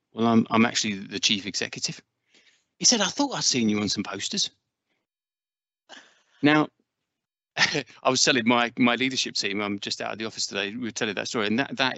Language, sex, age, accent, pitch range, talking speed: English, male, 30-49, British, 100-125 Hz, 200 wpm